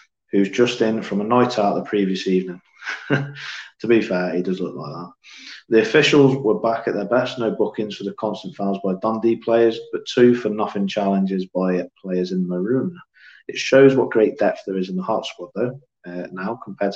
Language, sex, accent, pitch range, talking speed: English, male, British, 95-115 Hz, 210 wpm